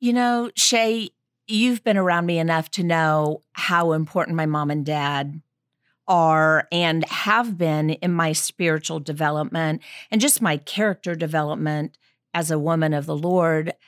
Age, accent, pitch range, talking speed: 50-69, American, 160-195 Hz, 150 wpm